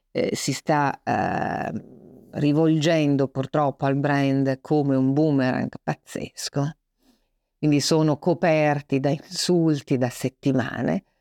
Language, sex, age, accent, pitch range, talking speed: Italian, female, 50-69, native, 135-155 Hz, 90 wpm